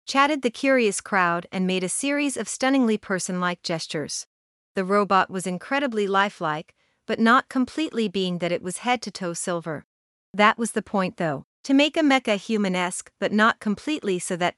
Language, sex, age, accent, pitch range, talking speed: English, female, 40-59, American, 180-245 Hz, 170 wpm